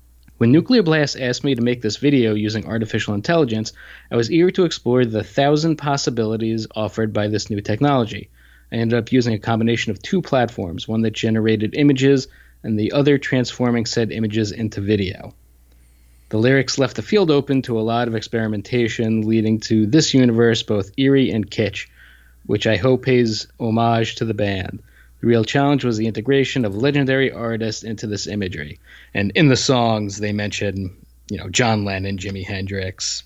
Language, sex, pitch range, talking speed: English, male, 105-130 Hz, 175 wpm